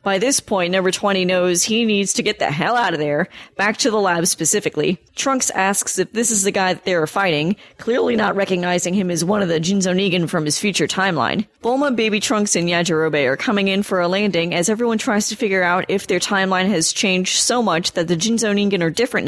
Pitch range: 180-225 Hz